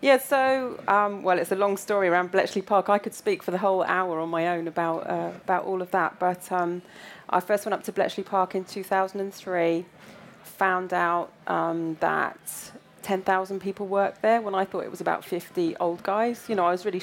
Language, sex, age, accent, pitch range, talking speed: English, female, 30-49, British, 165-190 Hz, 210 wpm